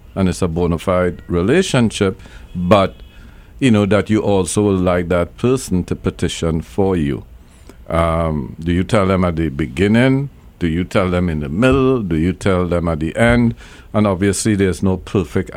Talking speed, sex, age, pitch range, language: 180 wpm, male, 50-69, 85-105 Hz, English